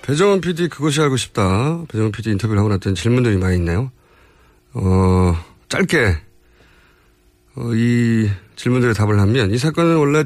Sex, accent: male, native